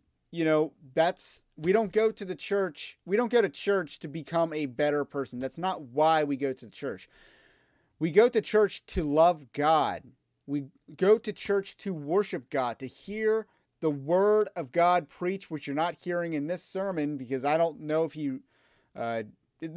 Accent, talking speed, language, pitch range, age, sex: American, 185 wpm, English, 145-190 Hz, 30-49, male